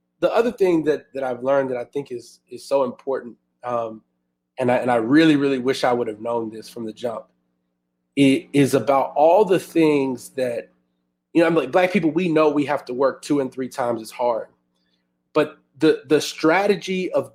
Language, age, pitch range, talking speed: English, 20-39, 120-165 Hz, 210 wpm